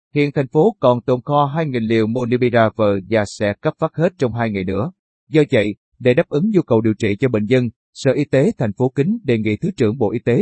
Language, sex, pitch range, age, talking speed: Vietnamese, male, 115-150 Hz, 30-49, 250 wpm